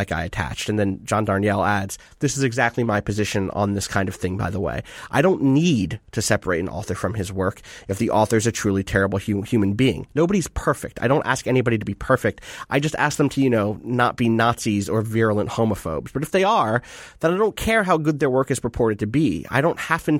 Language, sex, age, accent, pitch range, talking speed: English, male, 30-49, American, 115-150 Hz, 245 wpm